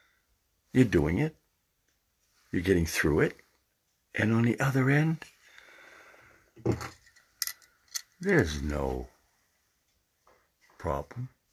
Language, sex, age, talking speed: English, male, 60-79, 80 wpm